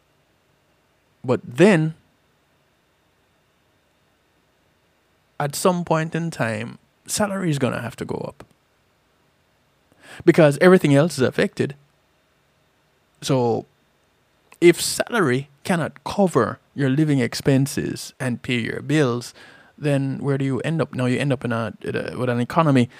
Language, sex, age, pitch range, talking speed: English, male, 20-39, 120-155 Hz, 130 wpm